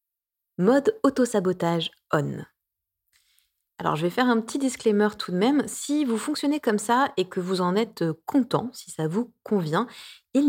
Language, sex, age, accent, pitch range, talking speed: French, female, 20-39, French, 165-220 Hz, 165 wpm